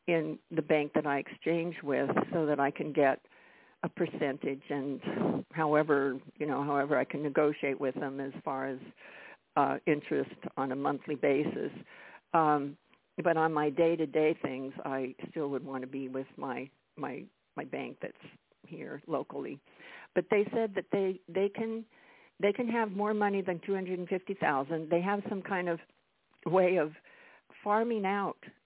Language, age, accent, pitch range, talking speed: English, 60-79, American, 150-190 Hz, 170 wpm